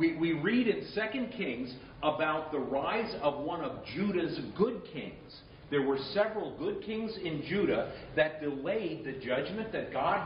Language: Italian